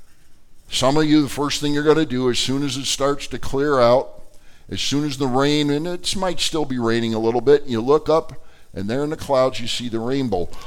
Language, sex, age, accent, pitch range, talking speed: English, male, 50-69, American, 115-155 Hz, 250 wpm